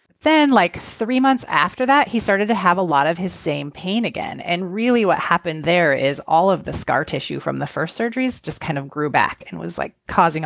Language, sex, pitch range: English, female, 160-215 Hz